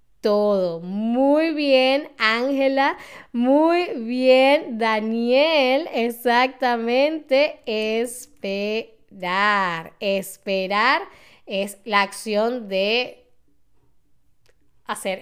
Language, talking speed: Spanish, 60 wpm